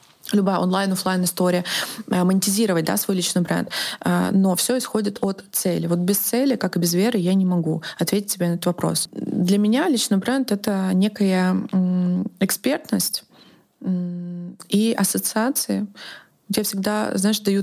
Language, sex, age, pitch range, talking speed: Russian, female, 20-39, 185-210 Hz, 135 wpm